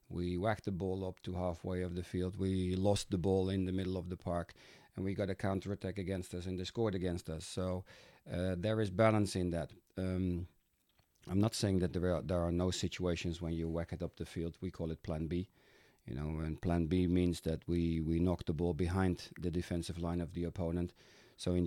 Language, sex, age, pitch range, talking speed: Hebrew, male, 40-59, 85-95 Hz, 225 wpm